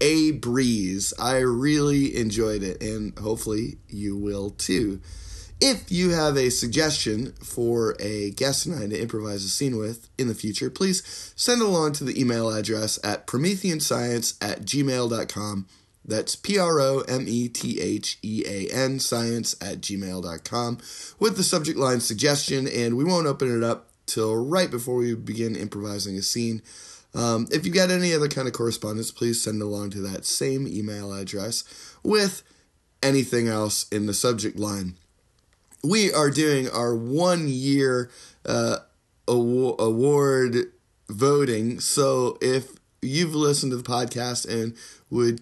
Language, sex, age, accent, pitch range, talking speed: English, male, 20-39, American, 110-135 Hz, 140 wpm